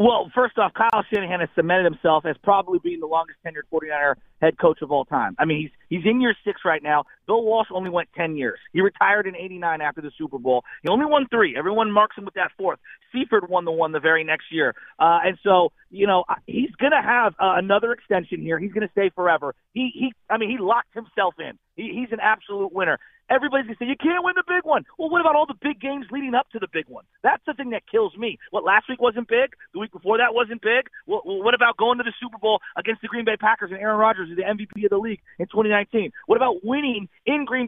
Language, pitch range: English, 185-250 Hz